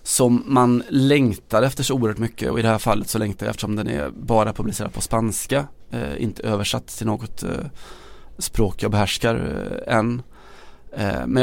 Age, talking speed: 20-39, 185 wpm